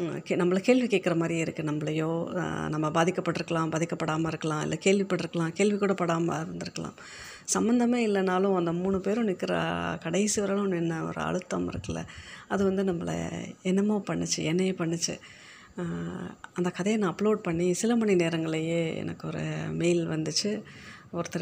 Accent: native